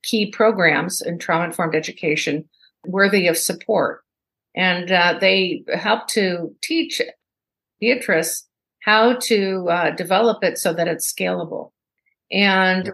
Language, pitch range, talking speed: English, 180-215 Hz, 115 wpm